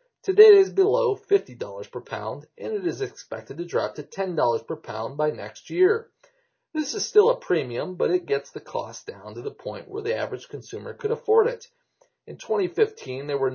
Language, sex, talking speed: English, male, 200 wpm